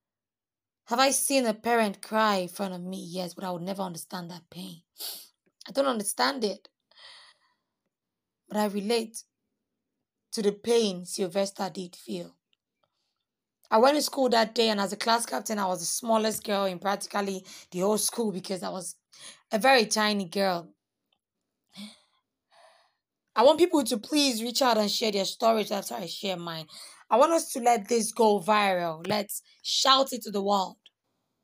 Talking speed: 170 wpm